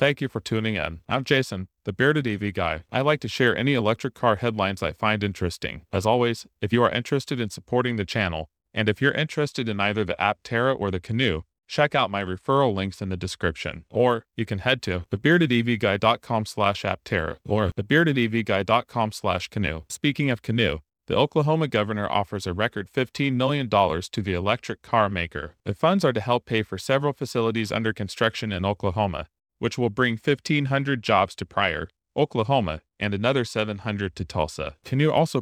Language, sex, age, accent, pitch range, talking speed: English, male, 30-49, American, 100-130 Hz, 185 wpm